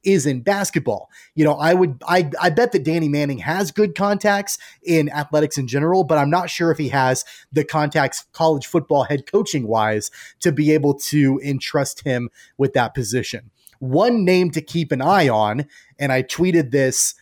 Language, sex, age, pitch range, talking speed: English, male, 30-49, 130-160 Hz, 185 wpm